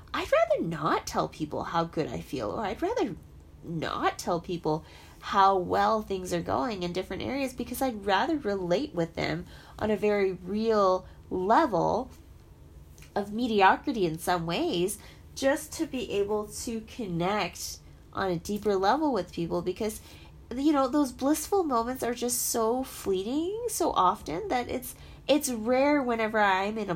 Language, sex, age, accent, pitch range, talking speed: English, female, 20-39, American, 180-275 Hz, 160 wpm